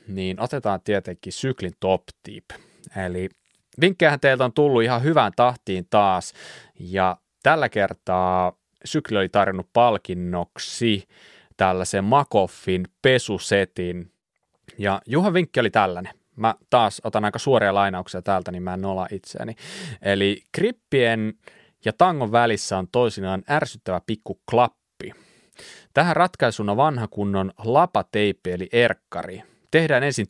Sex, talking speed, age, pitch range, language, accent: male, 120 wpm, 30-49, 95-135 Hz, Finnish, native